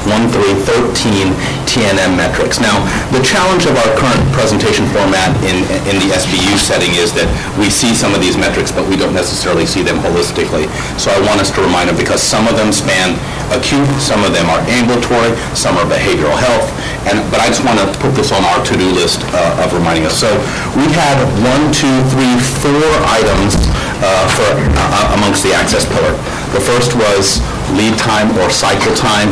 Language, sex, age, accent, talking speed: English, male, 40-59, American, 190 wpm